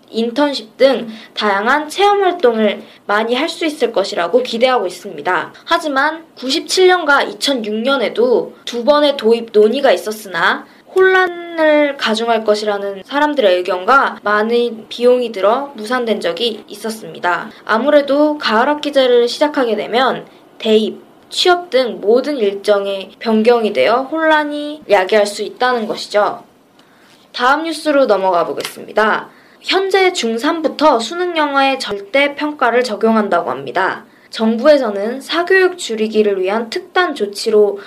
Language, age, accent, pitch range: Korean, 20-39, native, 210-295 Hz